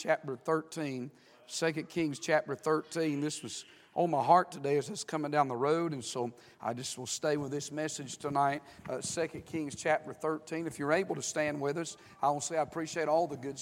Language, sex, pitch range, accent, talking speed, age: English, male, 145-175 Hz, American, 210 wpm, 50-69